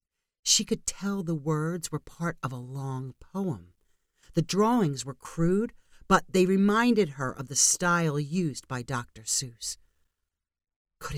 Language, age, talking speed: English, 40-59, 145 wpm